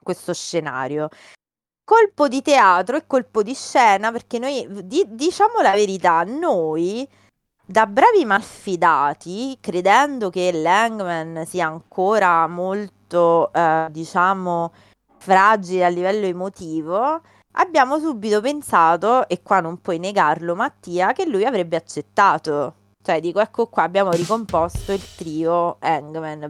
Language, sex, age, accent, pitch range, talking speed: Italian, female, 20-39, native, 165-235 Hz, 120 wpm